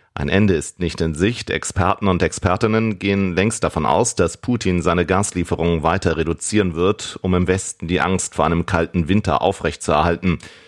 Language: German